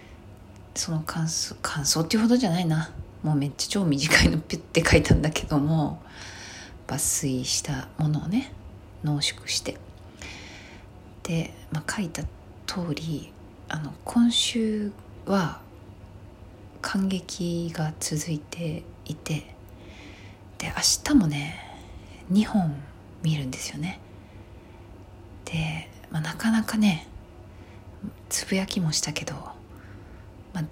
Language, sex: Japanese, female